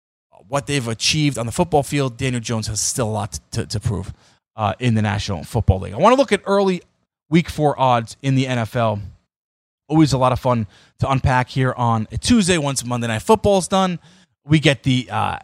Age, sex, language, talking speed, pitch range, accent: 20-39, male, English, 220 wpm, 115-165 Hz, American